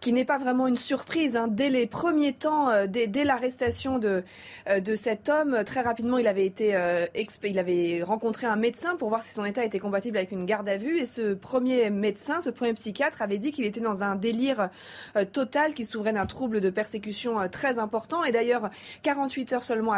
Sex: female